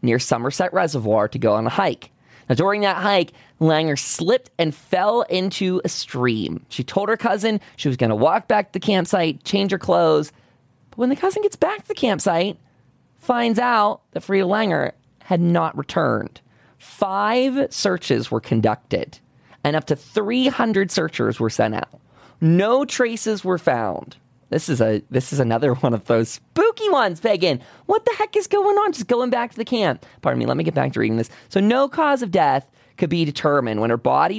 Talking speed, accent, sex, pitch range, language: 195 wpm, American, male, 130-215 Hz, English